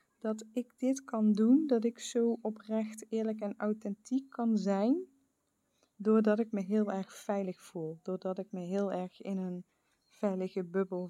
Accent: Dutch